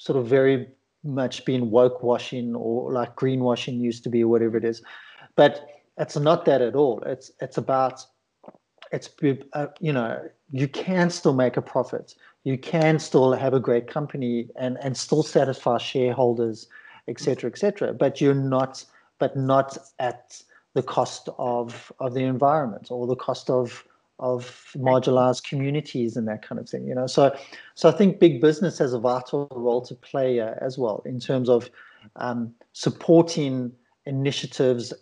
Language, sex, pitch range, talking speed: English, male, 120-140 Hz, 170 wpm